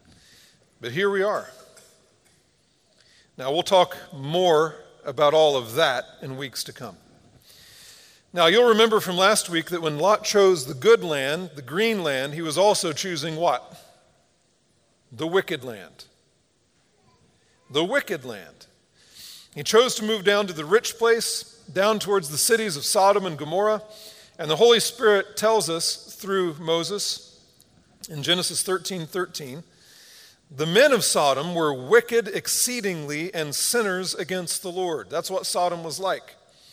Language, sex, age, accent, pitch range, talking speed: English, male, 40-59, American, 165-215 Hz, 145 wpm